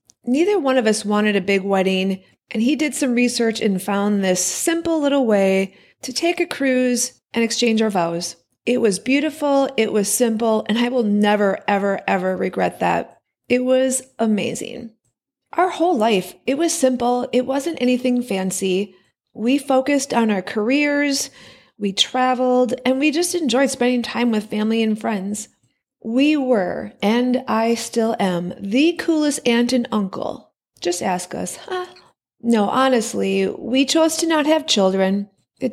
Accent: American